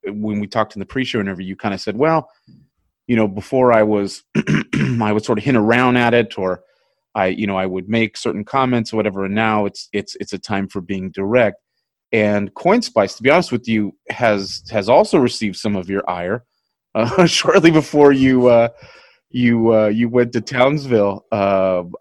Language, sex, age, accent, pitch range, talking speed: English, male, 30-49, American, 95-115 Hz, 200 wpm